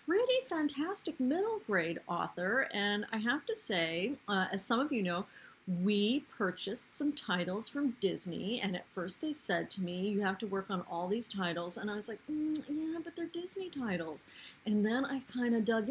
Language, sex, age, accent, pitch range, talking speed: English, female, 40-59, American, 190-280 Hz, 200 wpm